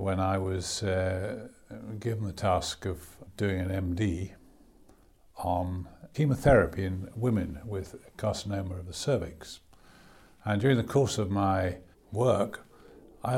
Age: 50-69